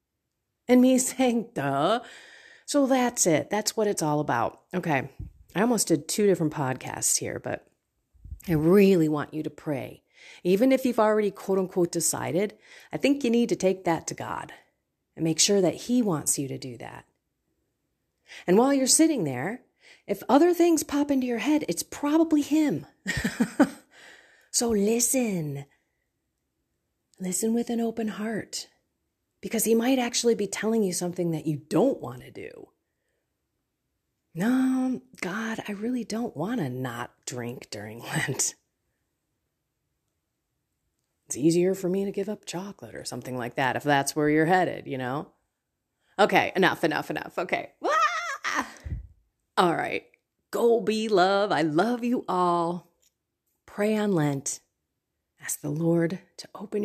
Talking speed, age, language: 150 wpm, 30-49, English